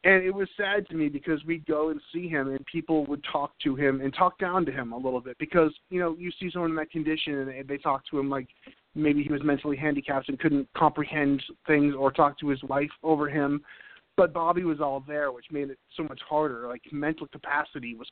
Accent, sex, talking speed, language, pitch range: American, male, 240 wpm, English, 140-165 Hz